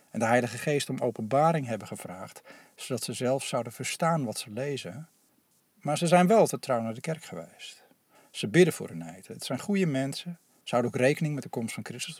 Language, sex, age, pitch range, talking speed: Dutch, male, 50-69, 120-160 Hz, 215 wpm